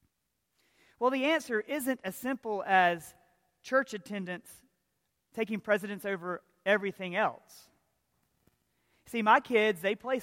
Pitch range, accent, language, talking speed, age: 175-230 Hz, American, English, 110 wpm, 40-59